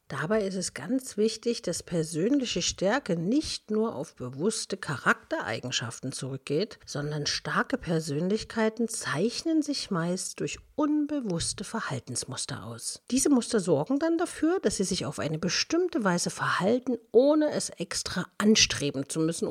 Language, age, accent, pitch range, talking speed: German, 50-69, German, 160-245 Hz, 130 wpm